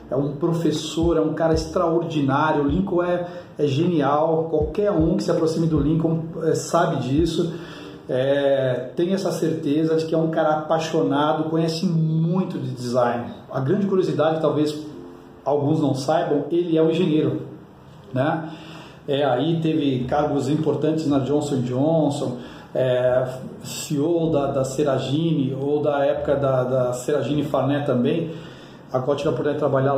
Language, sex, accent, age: Portuguese, male, Brazilian, 40-59